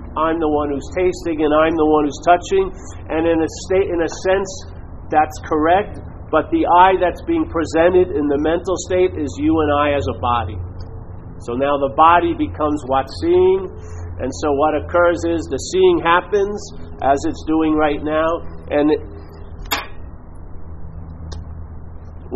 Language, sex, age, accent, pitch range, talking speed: English, male, 50-69, American, 140-180 Hz, 160 wpm